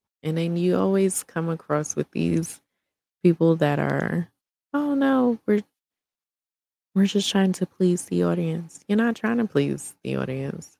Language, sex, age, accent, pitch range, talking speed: English, female, 20-39, American, 135-190 Hz, 155 wpm